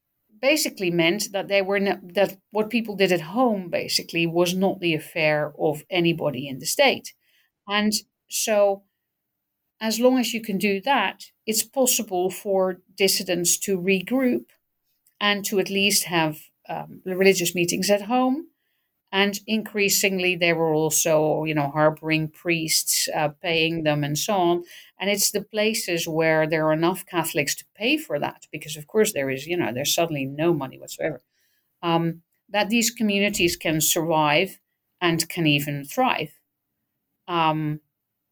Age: 50-69